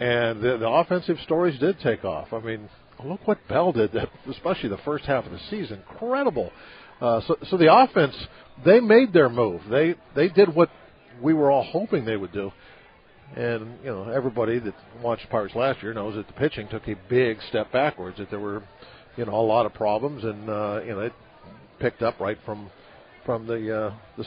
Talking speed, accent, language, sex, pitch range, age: 205 wpm, American, English, male, 105-135 Hz, 50-69